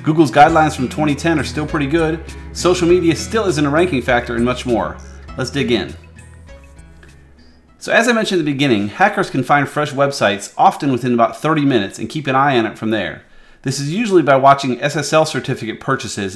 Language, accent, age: English, American, 30-49